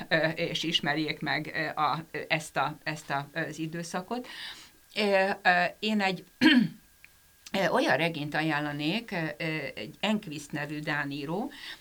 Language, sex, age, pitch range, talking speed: Hungarian, female, 60-79, 150-180 Hz, 80 wpm